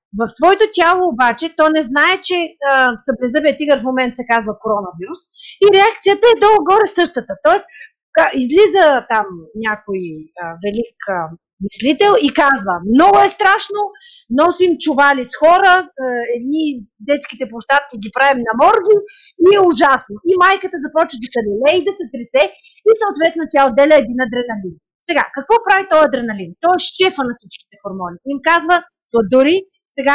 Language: Bulgarian